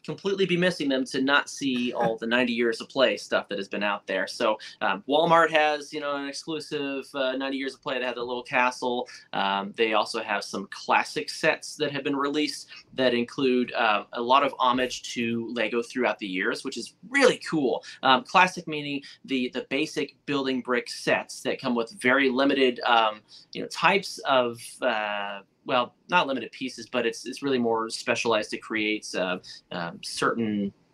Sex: male